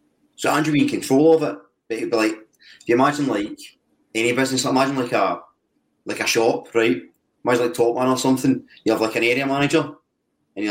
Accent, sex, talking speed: British, male, 215 wpm